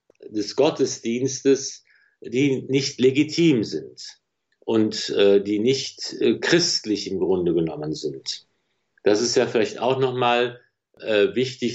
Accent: German